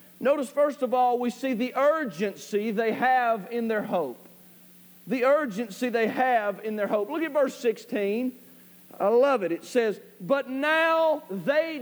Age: 40-59